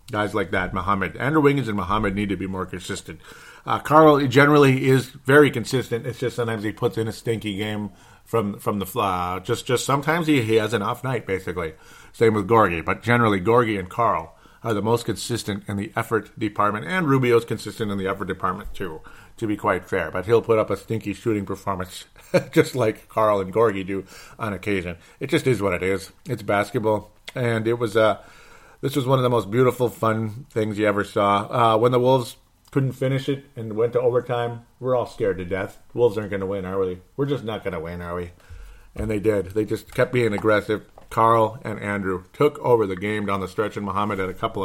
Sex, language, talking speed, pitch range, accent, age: male, English, 220 wpm, 100-120 Hz, American, 40-59